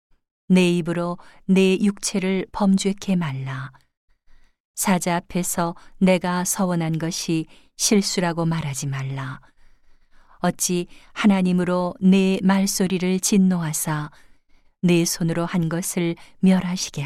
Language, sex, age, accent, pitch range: Korean, female, 40-59, native, 160-185 Hz